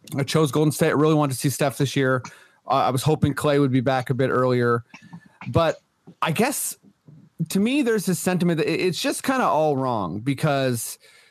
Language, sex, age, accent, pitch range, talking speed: English, male, 30-49, American, 140-175 Hz, 210 wpm